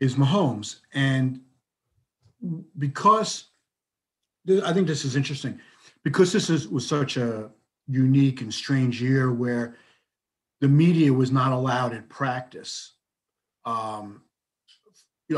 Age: 50-69